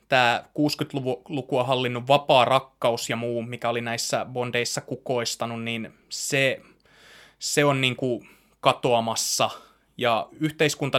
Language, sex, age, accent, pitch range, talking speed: Finnish, male, 20-39, native, 120-145 Hz, 120 wpm